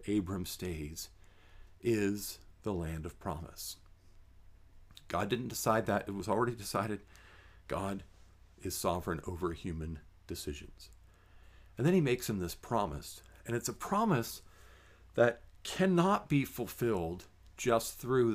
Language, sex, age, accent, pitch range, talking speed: English, male, 50-69, American, 85-115 Hz, 125 wpm